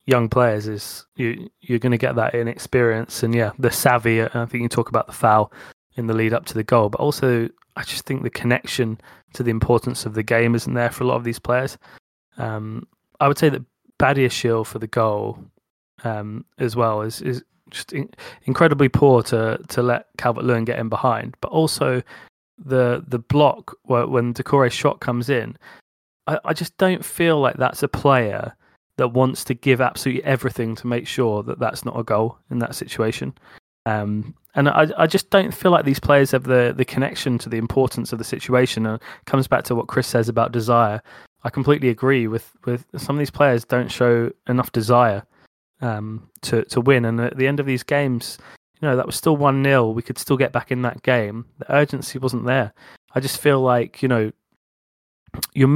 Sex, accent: male, British